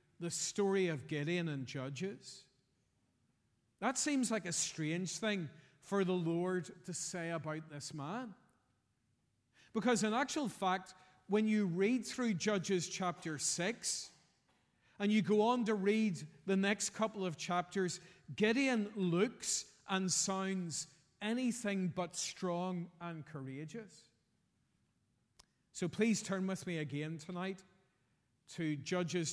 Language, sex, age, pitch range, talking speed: English, male, 40-59, 160-205 Hz, 125 wpm